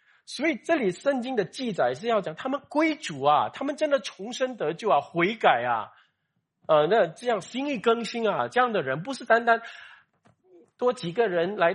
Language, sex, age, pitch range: Chinese, male, 50-69, 150-230 Hz